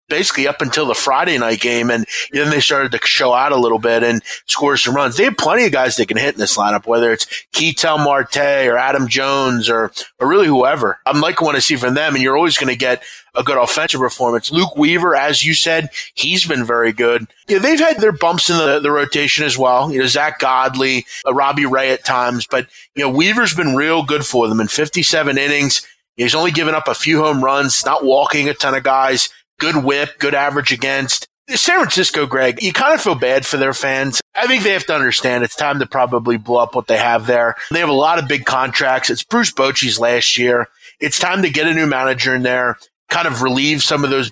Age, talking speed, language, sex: 30-49, 235 wpm, English, male